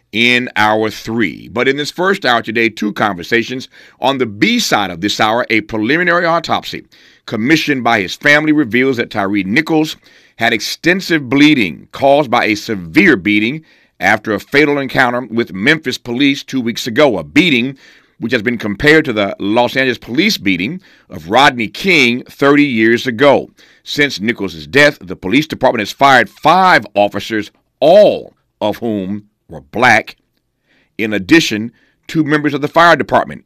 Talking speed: 160 wpm